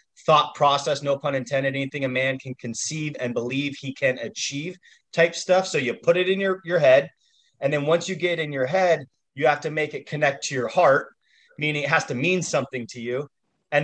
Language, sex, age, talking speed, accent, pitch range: English, male, 30-49, 220 wpm, American, 135-165 Hz